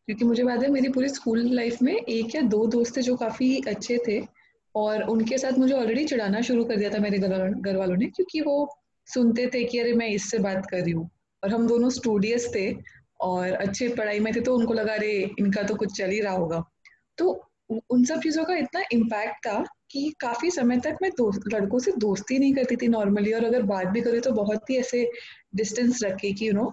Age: 20-39